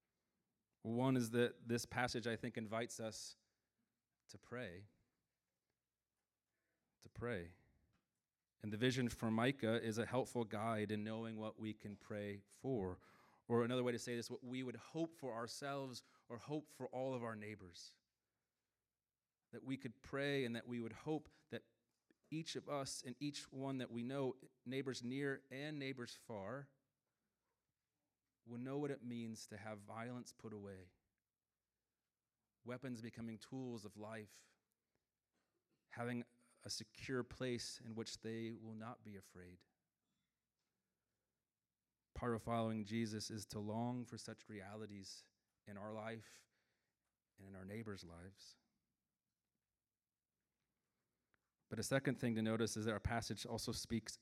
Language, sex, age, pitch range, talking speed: English, male, 30-49, 105-125 Hz, 140 wpm